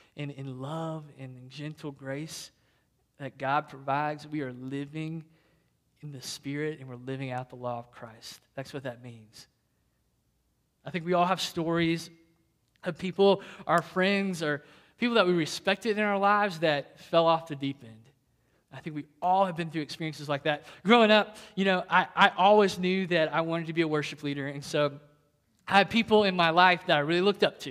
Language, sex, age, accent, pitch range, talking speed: English, male, 20-39, American, 145-175 Hz, 195 wpm